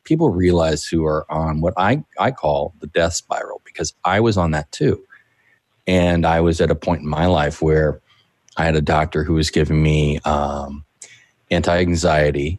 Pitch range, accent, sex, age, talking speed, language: 80-90 Hz, American, male, 30-49, 180 wpm, English